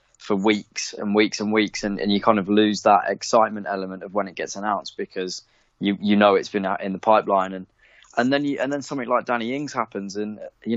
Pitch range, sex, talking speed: 100-115 Hz, male, 235 wpm